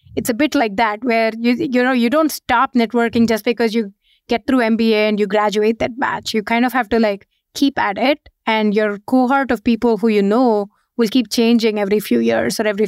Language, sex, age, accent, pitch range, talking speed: English, female, 30-49, Indian, 215-255 Hz, 230 wpm